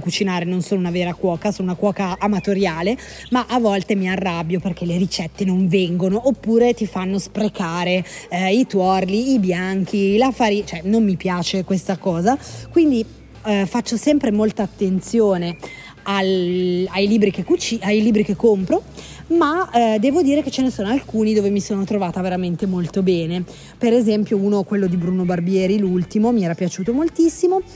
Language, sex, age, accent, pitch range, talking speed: Italian, female, 20-39, native, 185-230 Hz, 165 wpm